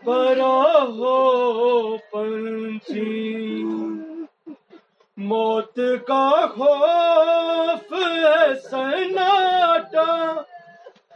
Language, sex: Urdu, male